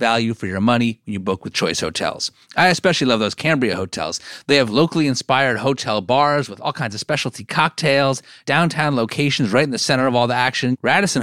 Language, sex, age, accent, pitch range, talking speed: English, male, 40-59, American, 115-155 Hz, 210 wpm